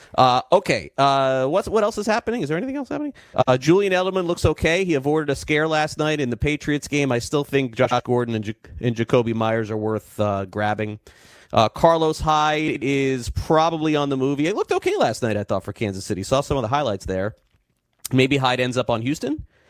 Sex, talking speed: male, 215 wpm